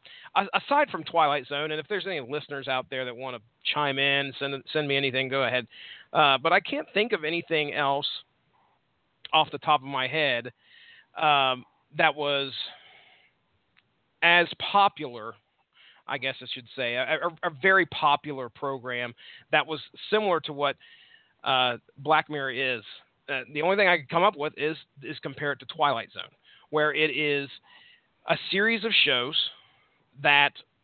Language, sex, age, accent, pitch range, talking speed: English, male, 40-59, American, 135-170 Hz, 165 wpm